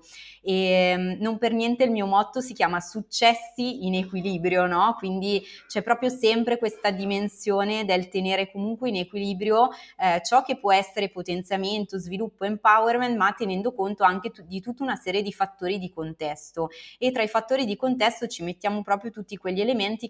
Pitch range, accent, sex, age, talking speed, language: 185-225 Hz, native, female, 20-39, 170 wpm, Italian